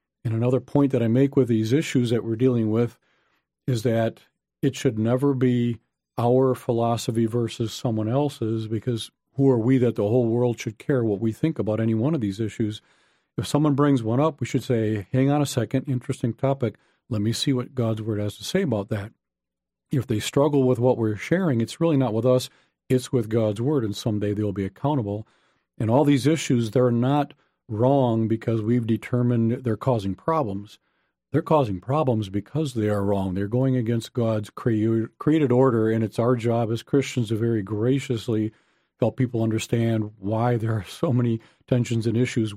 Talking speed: 190 wpm